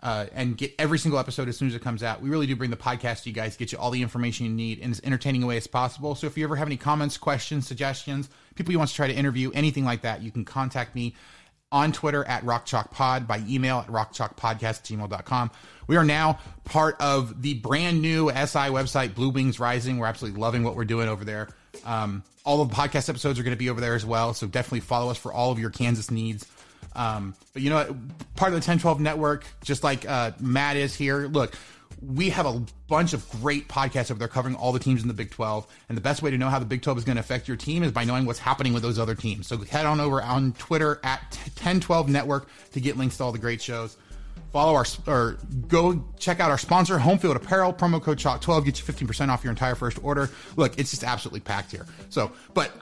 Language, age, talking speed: English, 30-49, 245 wpm